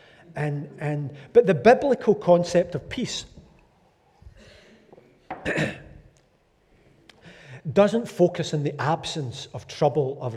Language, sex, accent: English, male, British